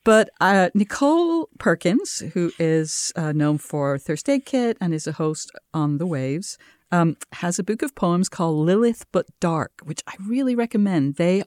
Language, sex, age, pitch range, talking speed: English, female, 50-69, 150-210 Hz, 180 wpm